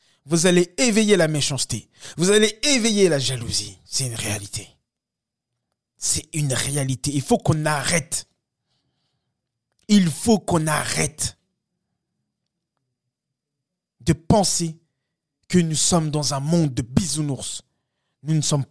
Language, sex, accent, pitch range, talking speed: French, male, French, 125-175 Hz, 120 wpm